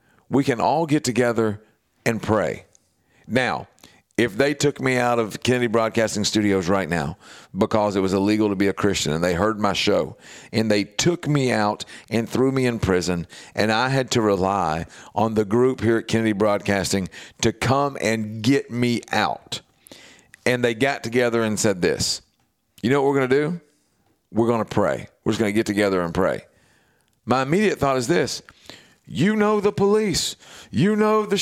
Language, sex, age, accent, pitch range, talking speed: English, male, 50-69, American, 110-140 Hz, 185 wpm